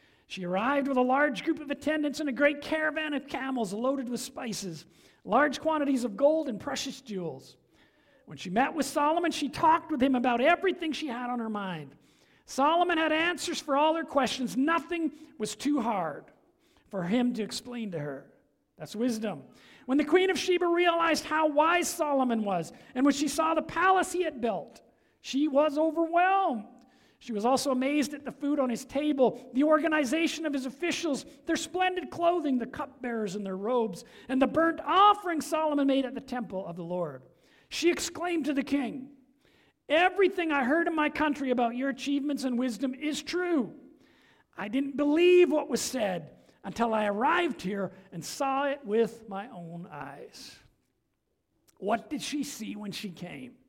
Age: 50-69